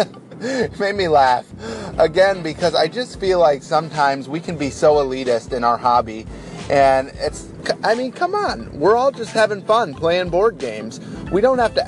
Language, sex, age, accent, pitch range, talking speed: English, male, 30-49, American, 130-180 Hz, 175 wpm